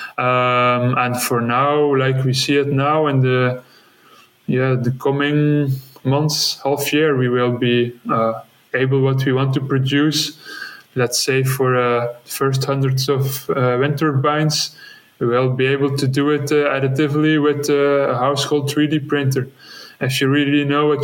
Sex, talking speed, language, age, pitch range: male, 165 wpm, English, 20-39, 130-145 Hz